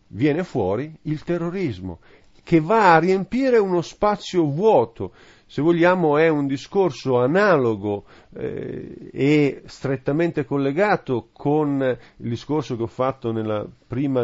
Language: Italian